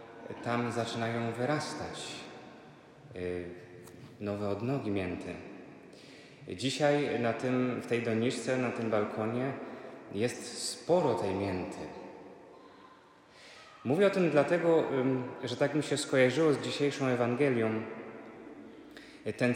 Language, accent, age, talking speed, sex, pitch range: Polish, native, 20-39, 90 wpm, male, 115-130 Hz